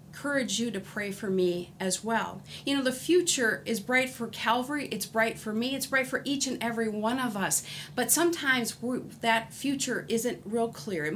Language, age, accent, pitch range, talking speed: English, 50-69, American, 180-240 Hz, 200 wpm